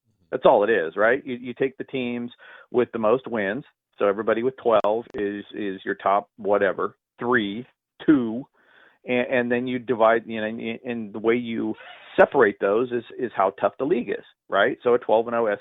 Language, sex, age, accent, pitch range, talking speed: English, male, 40-59, American, 105-125 Hz, 190 wpm